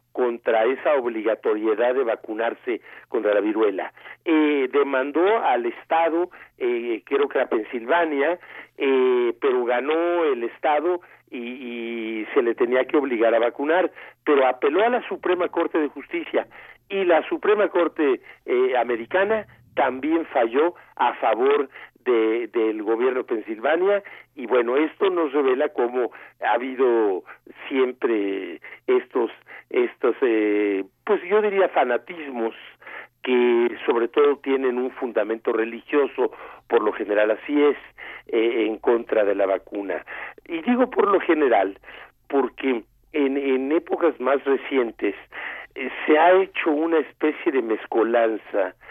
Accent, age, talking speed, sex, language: Mexican, 50-69, 130 wpm, male, Spanish